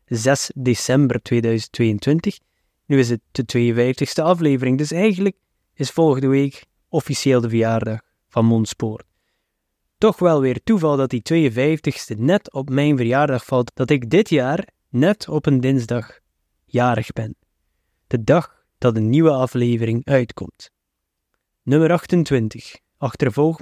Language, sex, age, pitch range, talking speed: Dutch, male, 20-39, 115-155 Hz, 130 wpm